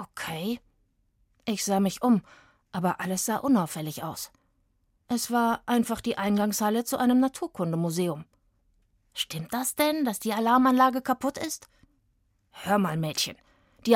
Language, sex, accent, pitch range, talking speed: German, female, German, 170-230 Hz, 130 wpm